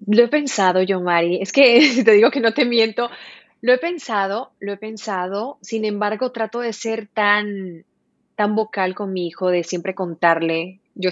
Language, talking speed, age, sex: Spanish, 185 wpm, 30-49, female